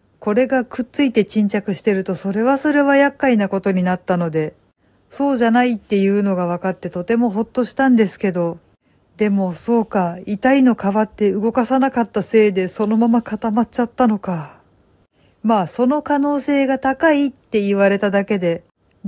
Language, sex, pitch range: Japanese, female, 185-245 Hz